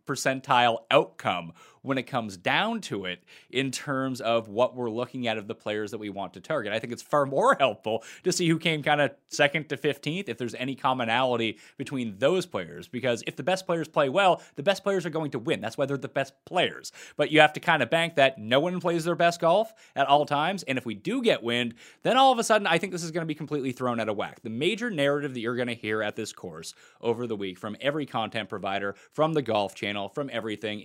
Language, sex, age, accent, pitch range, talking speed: English, male, 30-49, American, 110-155 Hz, 250 wpm